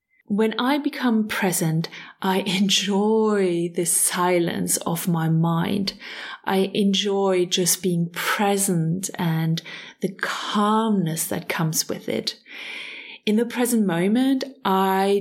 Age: 30-49